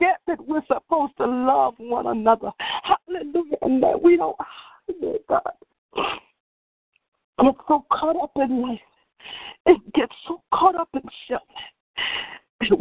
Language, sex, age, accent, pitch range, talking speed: English, female, 50-69, American, 235-360 Hz, 130 wpm